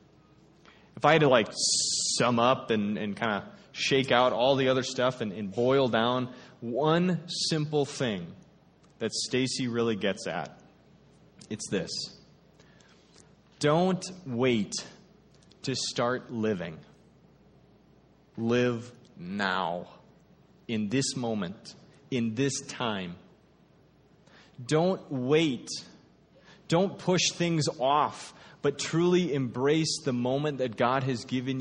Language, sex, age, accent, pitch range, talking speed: English, male, 20-39, American, 130-190 Hz, 110 wpm